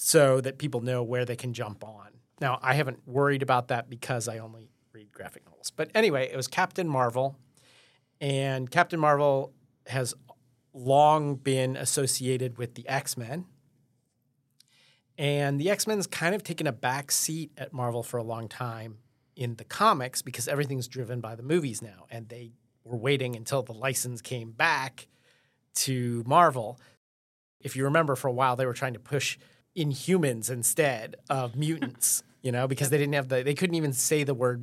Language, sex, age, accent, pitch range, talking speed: English, male, 30-49, American, 125-140 Hz, 180 wpm